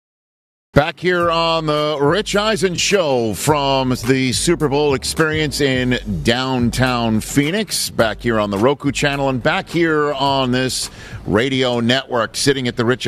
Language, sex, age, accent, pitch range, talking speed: English, male, 50-69, American, 100-135 Hz, 145 wpm